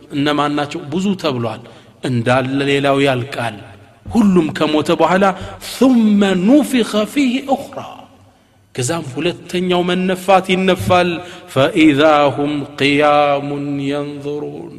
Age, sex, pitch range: 40-59, male, 140-180 Hz